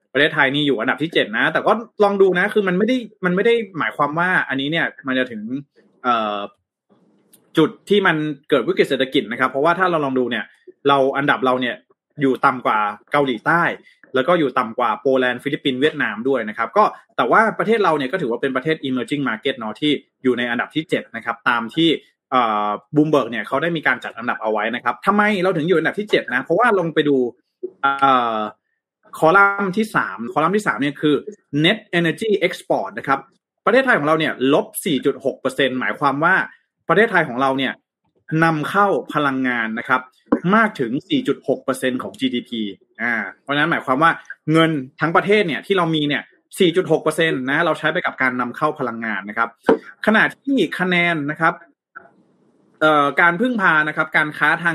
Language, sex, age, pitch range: Thai, male, 20-39, 130-180 Hz